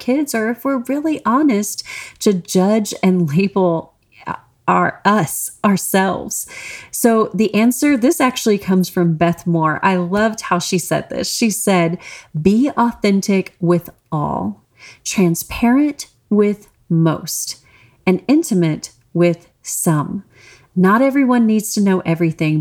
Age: 30-49